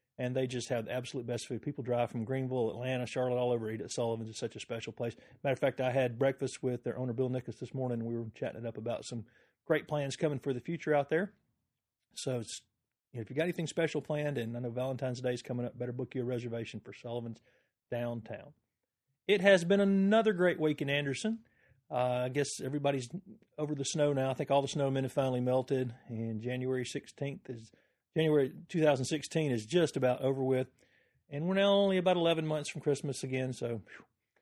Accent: American